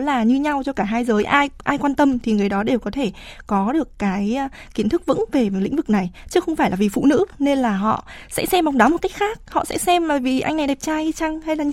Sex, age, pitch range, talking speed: female, 20-39, 210-280 Hz, 300 wpm